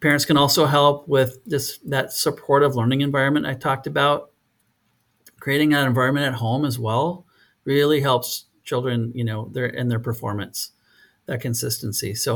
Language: English